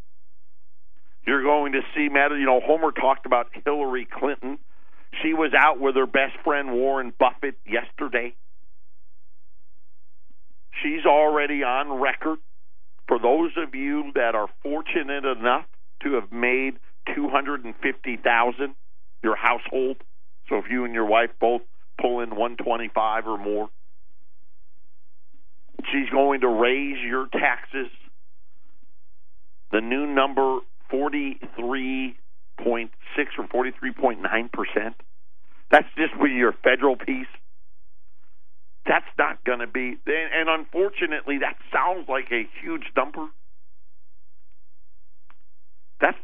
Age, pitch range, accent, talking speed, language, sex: 50-69, 110-145 Hz, American, 110 wpm, English, male